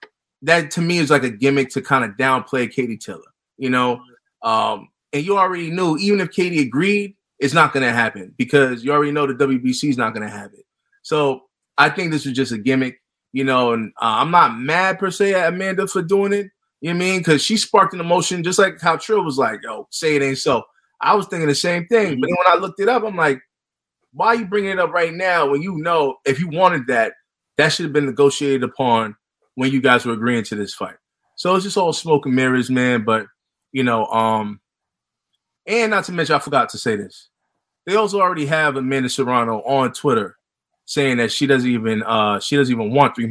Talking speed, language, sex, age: 230 wpm, English, male, 20-39